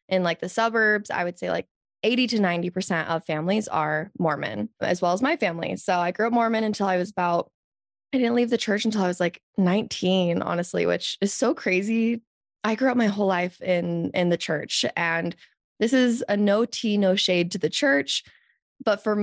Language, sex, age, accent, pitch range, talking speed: English, female, 20-39, American, 175-230 Hz, 210 wpm